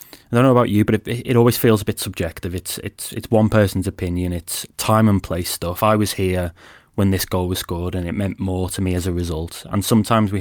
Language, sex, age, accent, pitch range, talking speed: English, male, 20-39, British, 90-110 Hz, 255 wpm